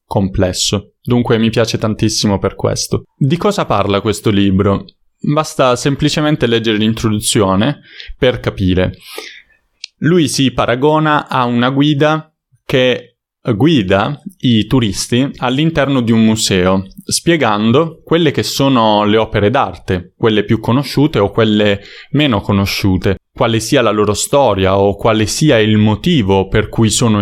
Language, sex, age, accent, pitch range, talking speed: Italian, male, 20-39, native, 100-135 Hz, 130 wpm